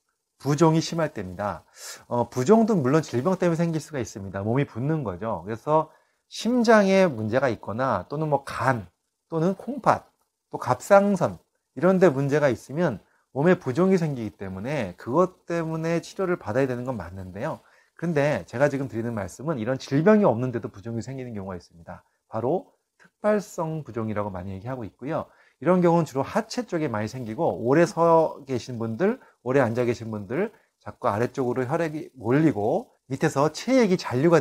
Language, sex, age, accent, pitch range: Korean, male, 30-49, native, 110-170 Hz